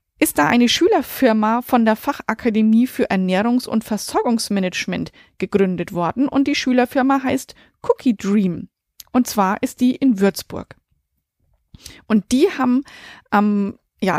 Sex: female